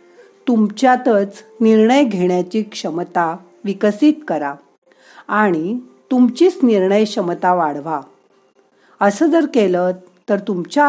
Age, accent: 50-69, native